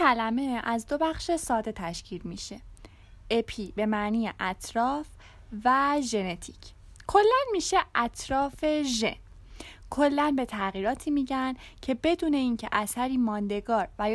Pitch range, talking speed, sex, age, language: 215-310 Hz, 115 wpm, female, 10-29, Persian